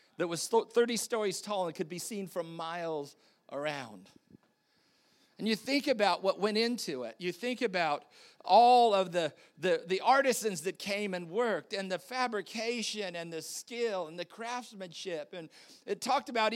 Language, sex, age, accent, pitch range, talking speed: English, male, 50-69, American, 175-240 Hz, 165 wpm